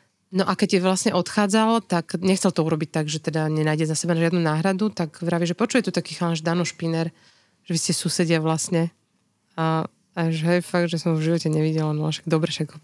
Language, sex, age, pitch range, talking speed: Slovak, female, 20-39, 165-185 Hz, 210 wpm